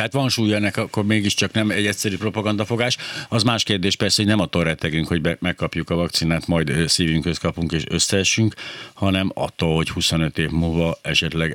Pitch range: 80-100 Hz